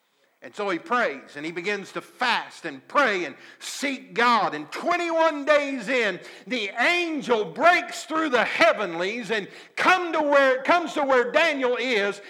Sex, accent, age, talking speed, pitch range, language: male, American, 50-69, 160 wpm, 215-290 Hz, English